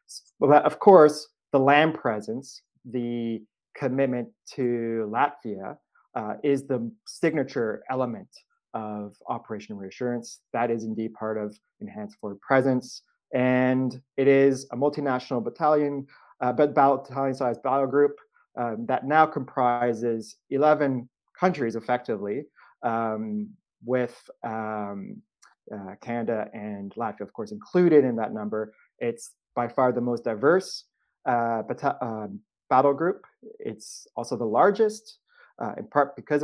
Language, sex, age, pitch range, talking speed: English, male, 20-39, 110-140 Hz, 125 wpm